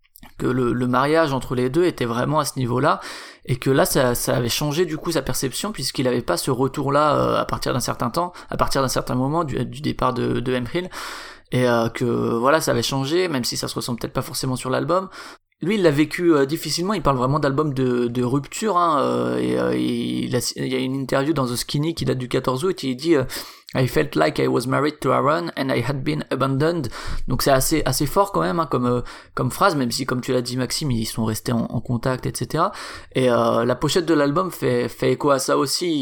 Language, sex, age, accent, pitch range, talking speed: French, male, 20-39, French, 125-155 Hz, 250 wpm